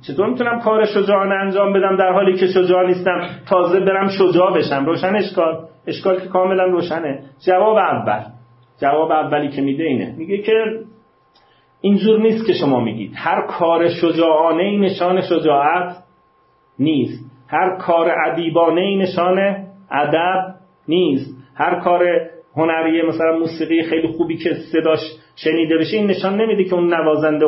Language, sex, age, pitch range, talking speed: Persian, male, 40-59, 145-190 Hz, 145 wpm